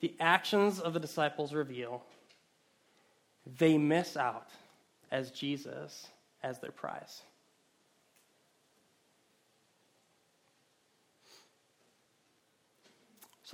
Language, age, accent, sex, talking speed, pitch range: English, 20-39, American, male, 65 wpm, 140-175 Hz